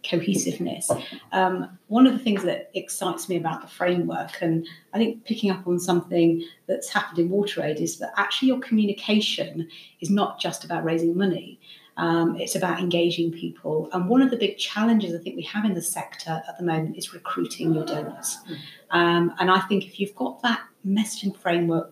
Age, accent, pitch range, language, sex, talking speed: 40-59, British, 170-195 Hz, English, female, 190 wpm